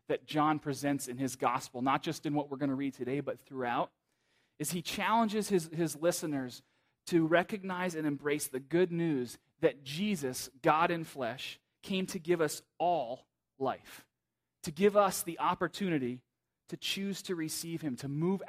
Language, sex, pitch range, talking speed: English, male, 140-185 Hz, 170 wpm